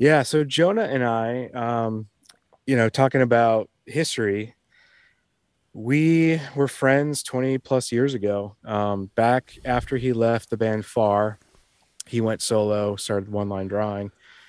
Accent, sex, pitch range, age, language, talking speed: American, male, 105-125 Hz, 30-49, English, 135 wpm